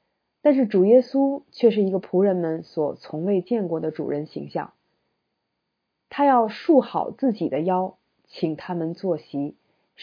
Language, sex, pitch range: Chinese, female, 170-225 Hz